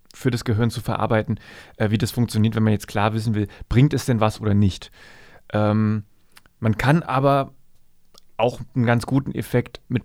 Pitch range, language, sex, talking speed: 110-135 Hz, German, male, 180 wpm